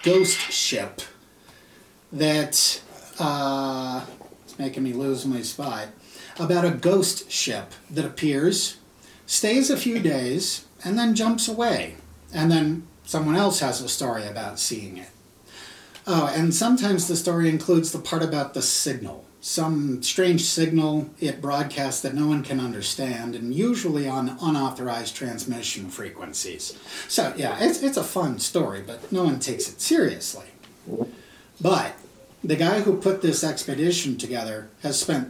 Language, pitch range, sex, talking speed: English, 135-190 Hz, male, 145 wpm